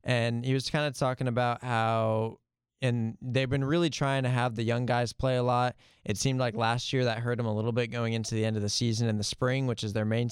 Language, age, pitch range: English, 20-39, 110-125 Hz